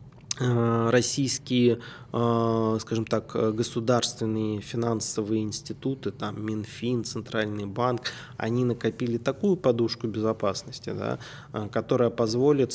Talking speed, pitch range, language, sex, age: 85 wpm, 110-130 Hz, Russian, male, 20-39